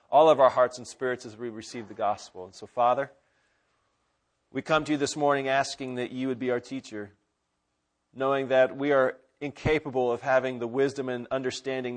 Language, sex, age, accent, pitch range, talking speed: English, male, 40-59, American, 115-135 Hz, 190 wpm